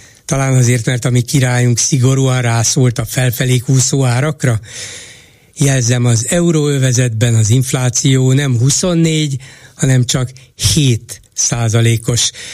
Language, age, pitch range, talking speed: Hungarian, 60-79, 120-140 Hz, 110 wpm